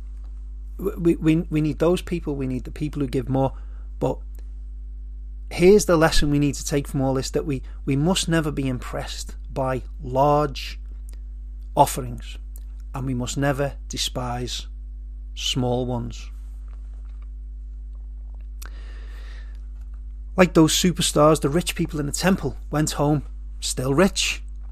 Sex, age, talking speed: male, 30-49, 130 wpm